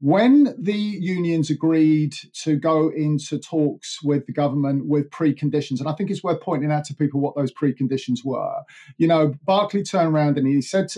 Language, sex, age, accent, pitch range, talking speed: English, male, 40-59, British, 140-160 Hz, 185 wpm